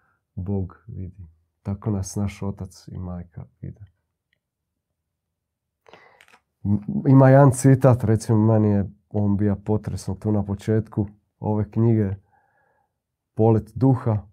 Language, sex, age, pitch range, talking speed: Croatian, male, 40-59, 95-120 Hz, 100 wpm